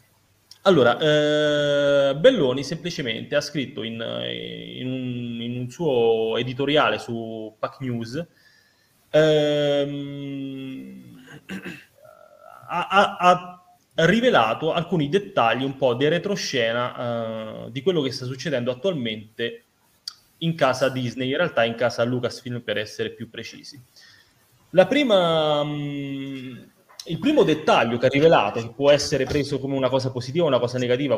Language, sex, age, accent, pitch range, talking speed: Italian, male, 30-49, native, 120-150 Hz, 120 wpm